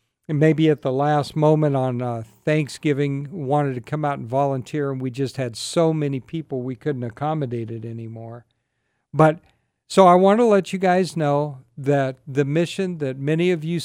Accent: American